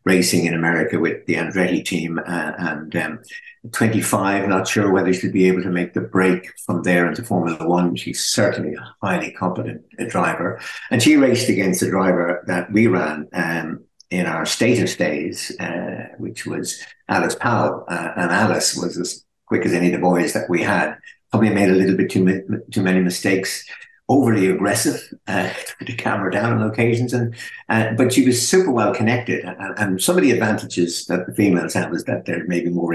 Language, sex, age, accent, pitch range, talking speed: English, male, 60-79, British, 90-115 Hz, 195 wpm